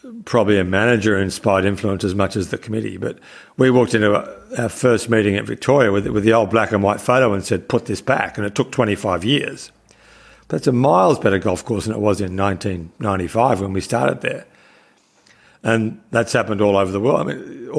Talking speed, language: 200 wpm, English